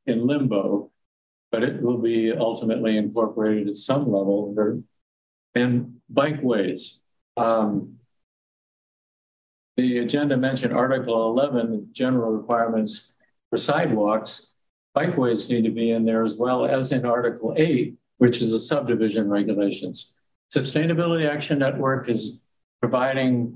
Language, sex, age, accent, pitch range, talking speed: English, male, 50-69, American, 110-130 Hz, 115 wpm